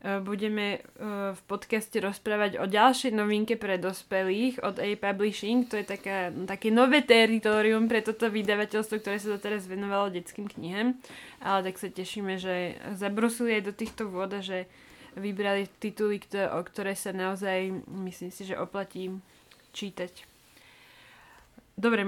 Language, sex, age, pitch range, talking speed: Slovak, female, 20-39, 200-230 Hz, 140 wpm